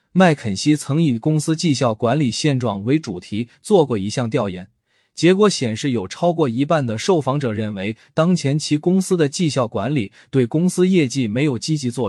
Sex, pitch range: male, 115-160 Hz